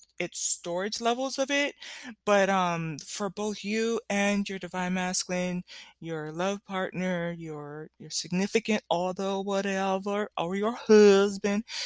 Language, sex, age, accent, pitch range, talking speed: English, female, 20-39, American, 170-205 Hz, 125 wpm